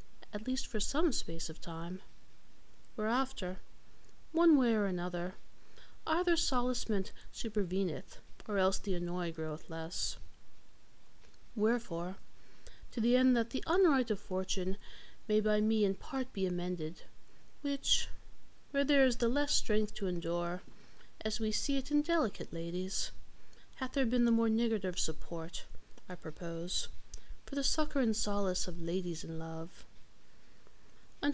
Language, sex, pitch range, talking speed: English, female, 175-260 Hz, 140 wpm